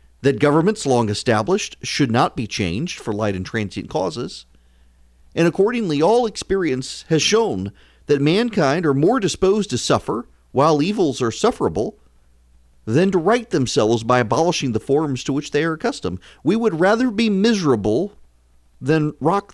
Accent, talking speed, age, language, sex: American, 155 wpm, 40-59, English, male